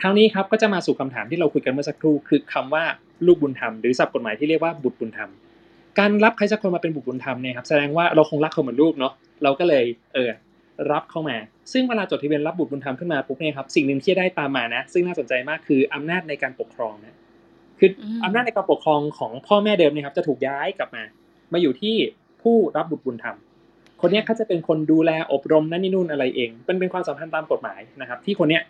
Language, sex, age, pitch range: English, male, 20-39, 140-190 Hz